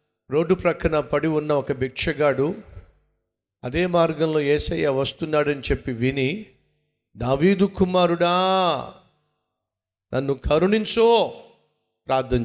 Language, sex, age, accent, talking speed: Telugu, male, 50-69, native, 80 wpm